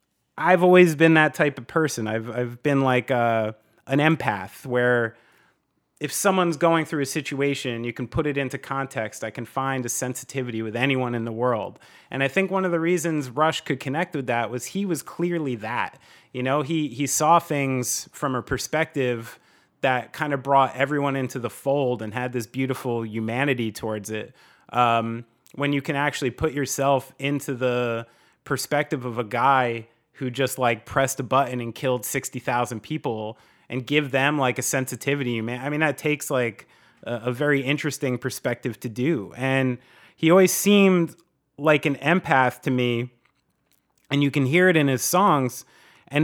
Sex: male